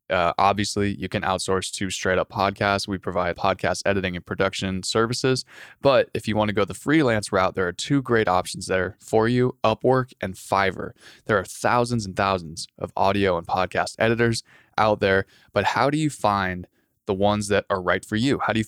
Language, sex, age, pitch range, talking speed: English, male, 20-39, 95-110 Hz, 200 wpm